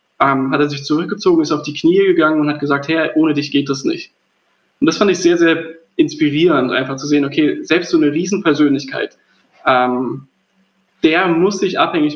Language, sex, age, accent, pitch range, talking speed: German, male, 20-39, German, 140-195 Hz, 190 wpm